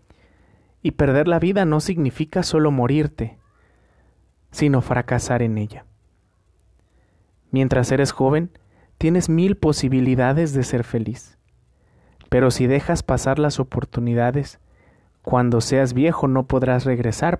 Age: 40-59